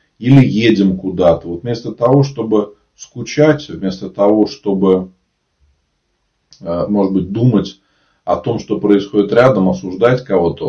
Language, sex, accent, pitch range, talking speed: Russian, male, native, 95-125 Hz, 120 wpm